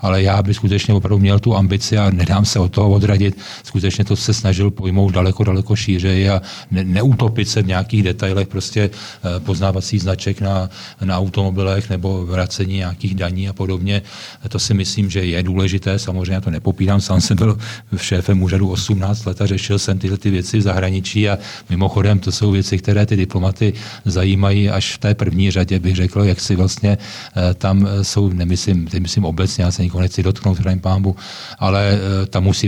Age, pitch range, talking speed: 40-59, 95-105 Hz, 180 wpm